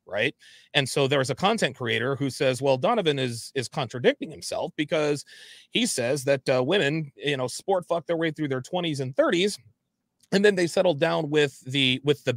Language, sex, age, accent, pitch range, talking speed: English, male, 30-49, American, 125-160 Hz, 205 wpm